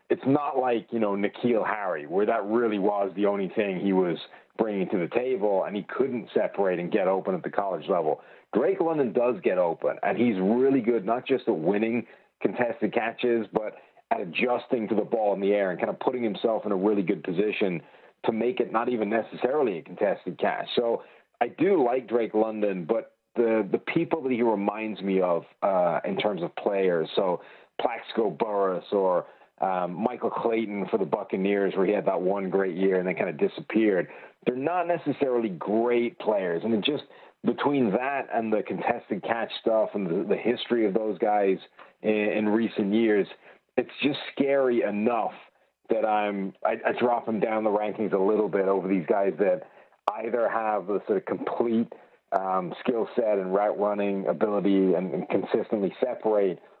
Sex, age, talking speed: male, 40-59, 190 wpm